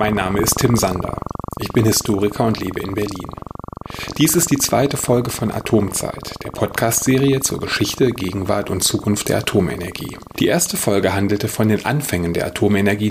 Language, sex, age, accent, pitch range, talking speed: German, male, 30-49, German, 100-125 Hz, 170 wpm